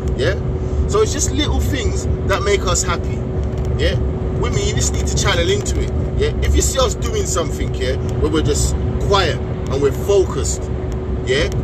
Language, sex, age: English, male, 30-49